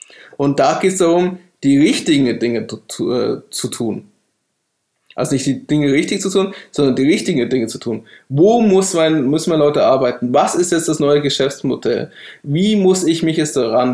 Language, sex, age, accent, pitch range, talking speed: German, male, 20-39, German, 140-185 Hz, 190 wpm